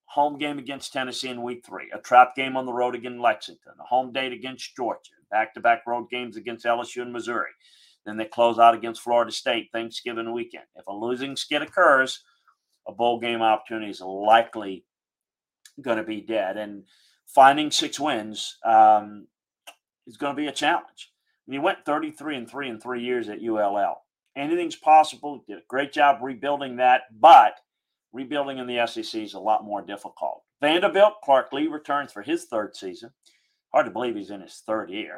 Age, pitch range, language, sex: 40-59, 110-140 Hz, English, male